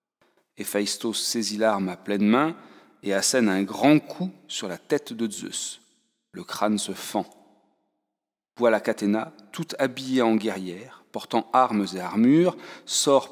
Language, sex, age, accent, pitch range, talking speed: French, male, 40-59, French, 100-140 Hz, 140 wpm